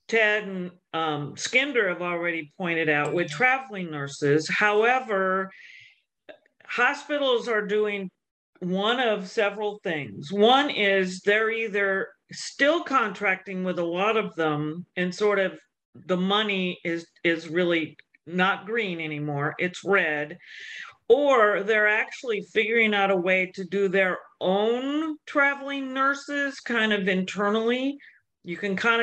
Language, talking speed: English, 130 wpm